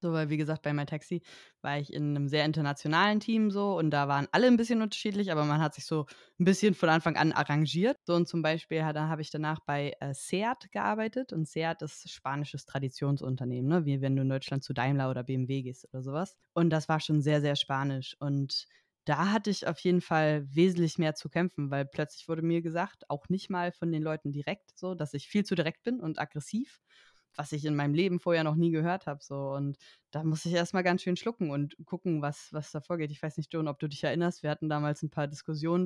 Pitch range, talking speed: 150-175 Hz, 235 wpm